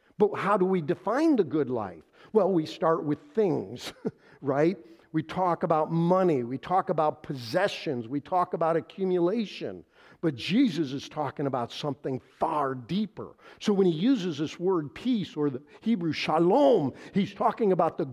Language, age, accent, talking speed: English, 50-69, American, 160 wpm